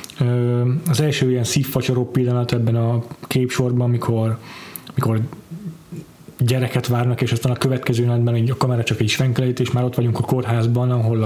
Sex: male